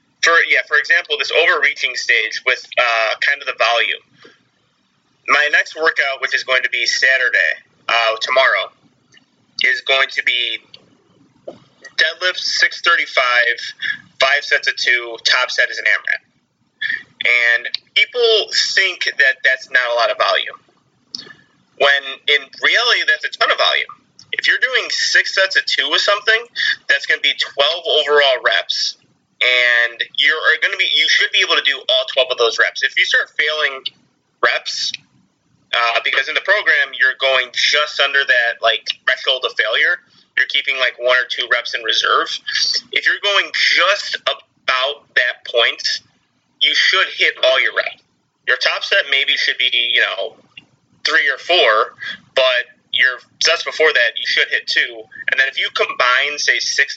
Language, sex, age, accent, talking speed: English, male, 30-49, American, 165 wpm